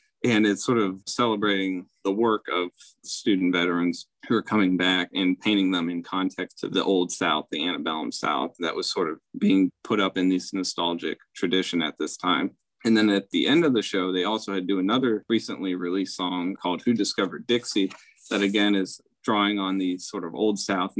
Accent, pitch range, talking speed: American, 90-105 Hz, 205 wpm